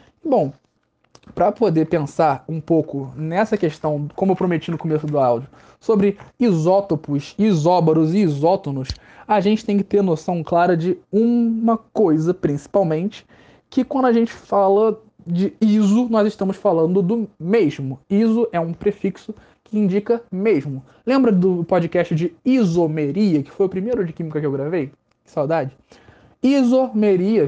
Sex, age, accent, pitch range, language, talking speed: male, 20-39, Brazilian, 160-215 Hz, Portuguese, 145 wpm